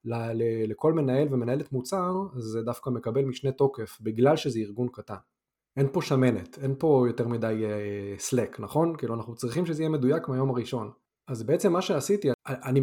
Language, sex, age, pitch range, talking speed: Hebrew, male, 20-39, 115-140 Hz, 175 wpm